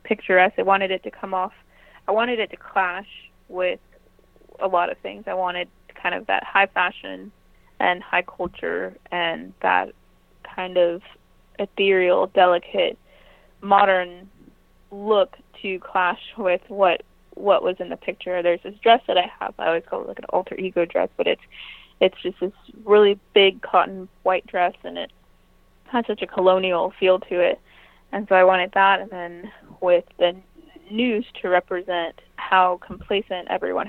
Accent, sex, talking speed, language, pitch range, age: American, female, 165 wpm, English, 180-210 Hz, 20-39